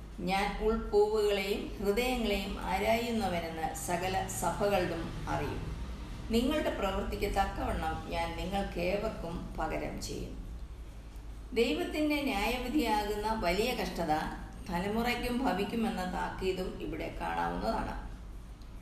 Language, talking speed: Malayalam, 75 wpm